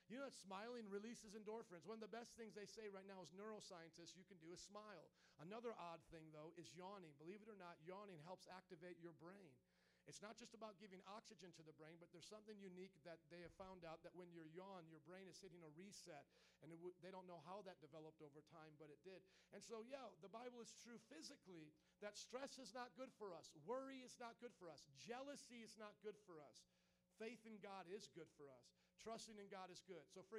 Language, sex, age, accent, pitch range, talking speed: English, male, 50-69, American, 170-215 Hz, 235 wpm